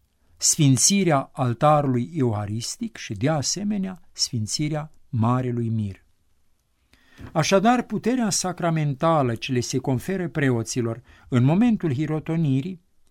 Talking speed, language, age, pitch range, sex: 90 wpm, Romanian, 60-79, 125-175 Hz, male